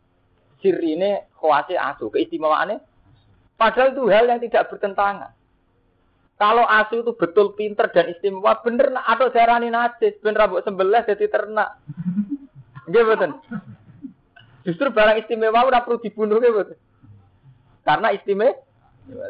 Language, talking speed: Indonesian, 120 wpm